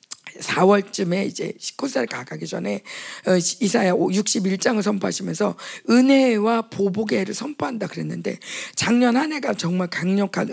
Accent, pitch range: native, 200-280 Hz